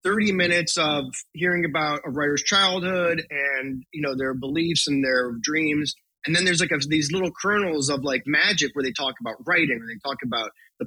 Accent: American